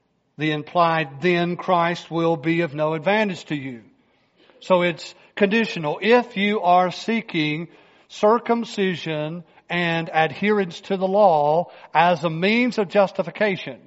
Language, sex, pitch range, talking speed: English, male, 165-200 Hz, 125 wpm